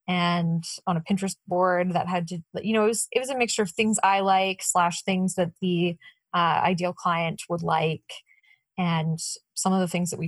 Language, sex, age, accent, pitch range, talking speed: English, female, 20-39, American, 175-205 Hz, 210 wpm